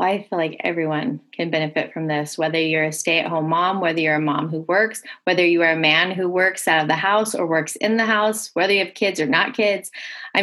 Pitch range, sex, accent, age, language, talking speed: 170-210 Hz, female, American, 20-39, English, 260 wpm